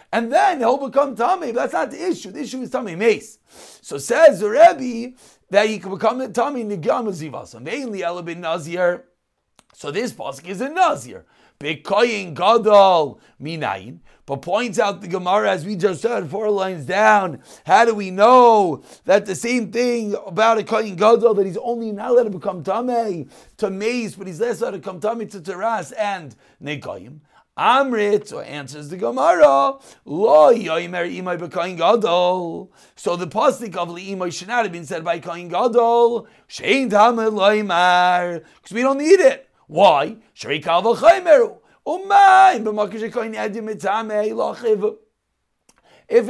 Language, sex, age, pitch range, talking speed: English, male, 40-59, 190-235 Hz, 130 wpm